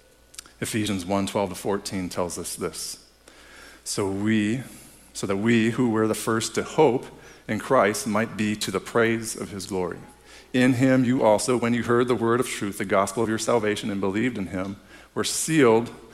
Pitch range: 95-115 Hz